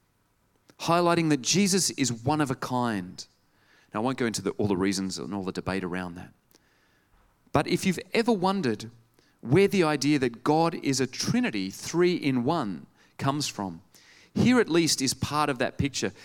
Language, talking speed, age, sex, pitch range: English, 175 wpm, 30-49, male, 115-165 Hz